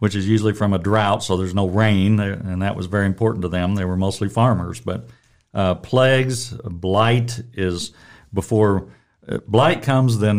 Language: English